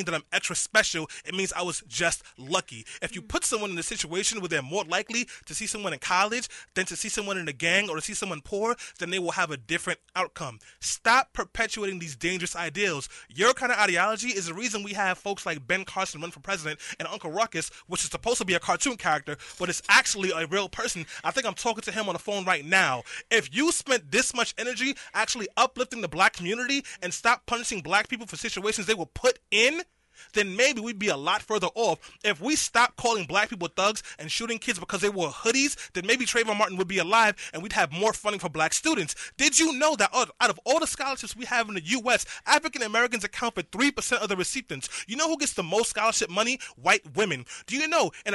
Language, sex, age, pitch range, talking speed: English, male, 20-39, 180-240 Hz, 235 wpm